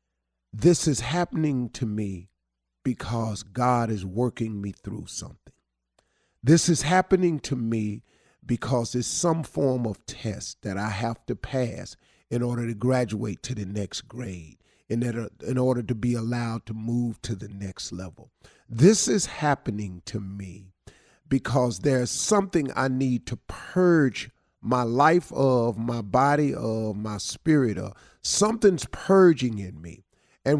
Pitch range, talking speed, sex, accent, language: 105-140 Hz, 145 wpm, male, American, English